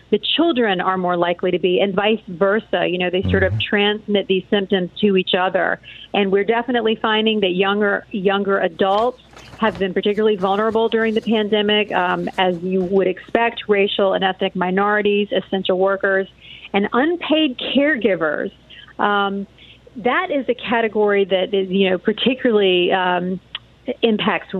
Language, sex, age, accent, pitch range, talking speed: English, female, 40-59, American, 185-225 Hz, 150 wpm